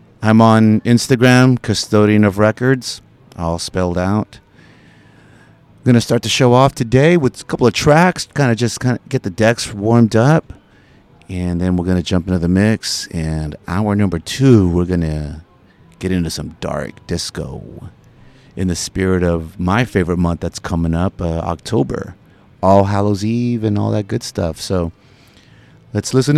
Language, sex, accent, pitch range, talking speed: English, male, American, 95-130 Hz, 175 wpm